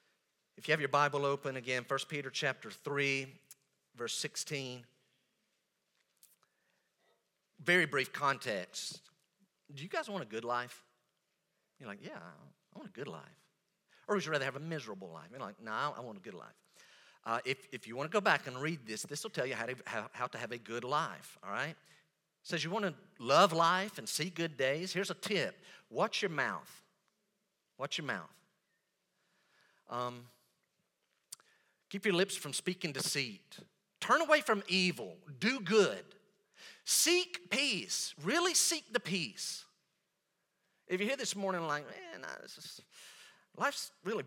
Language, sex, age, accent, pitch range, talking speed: English, male, 50-69, American, 135-195 Hz, 165 wpm